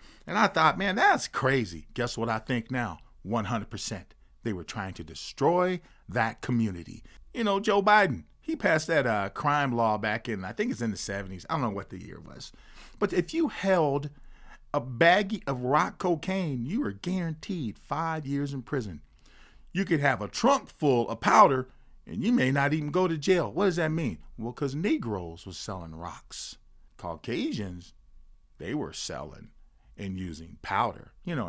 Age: 40-59